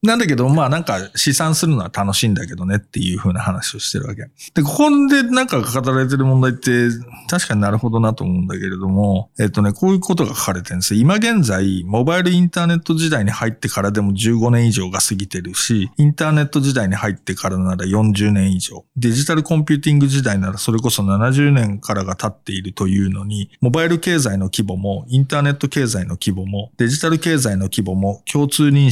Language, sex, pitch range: Japanese, male, 100-145 Hz